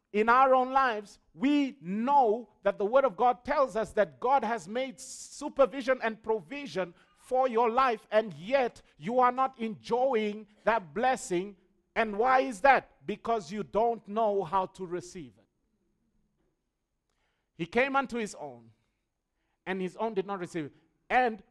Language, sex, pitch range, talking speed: English, male, 145-225 Hz, 155 wpm